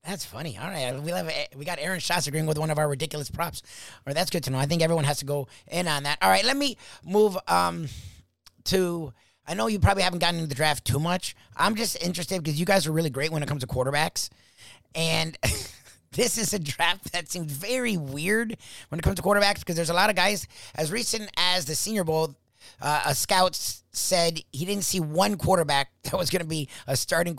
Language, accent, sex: English, American, male